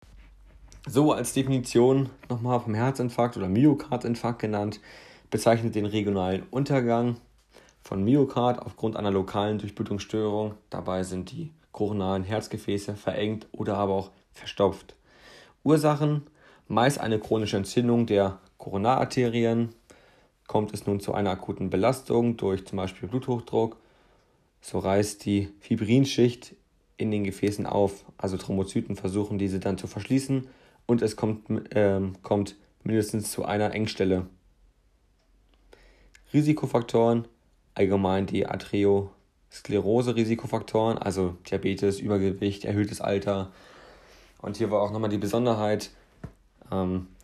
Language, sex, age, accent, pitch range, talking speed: German, male, 40-59, German, 100-115 Hz, 115 wpm